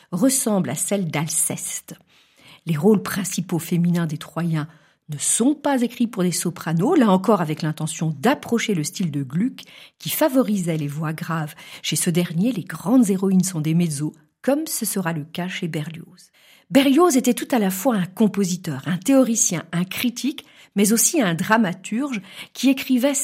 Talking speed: 170 wpm